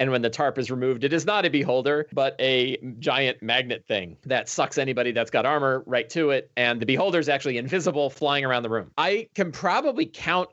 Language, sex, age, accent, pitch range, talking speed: English, male, 30-49, American, 115-150 Hz, 220 wpm